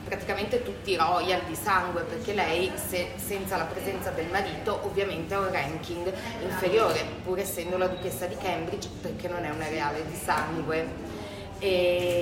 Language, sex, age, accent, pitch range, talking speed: Italian, female, 30-49, native, 155-180 Hz, 155 wpm